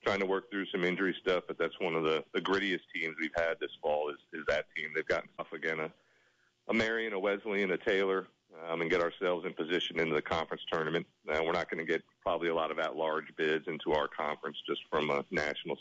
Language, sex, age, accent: English, male, 40-59, American